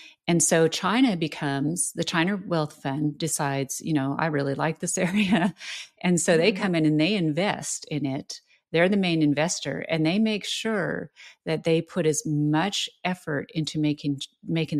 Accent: American